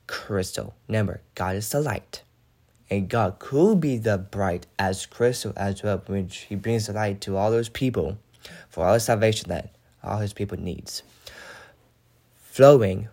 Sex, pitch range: male, 100-120 Hz